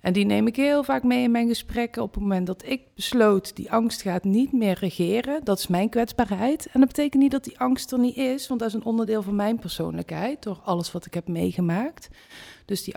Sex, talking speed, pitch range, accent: female, 240 wpm, 180-235 Hz, Dutch